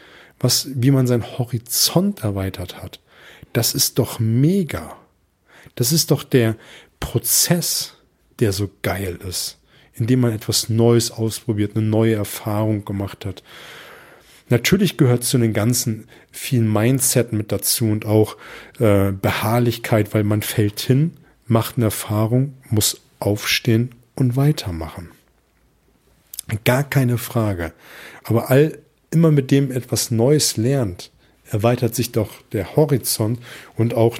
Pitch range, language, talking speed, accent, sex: 105-130 Hz, German, 130 wpm, German, male